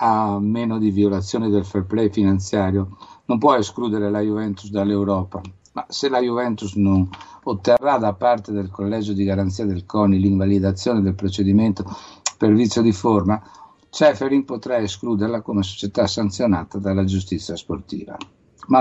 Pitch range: 95-110 Hz